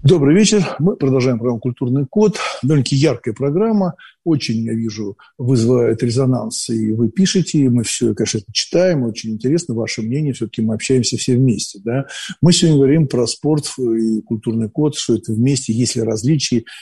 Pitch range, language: 115-135 Hz, Russian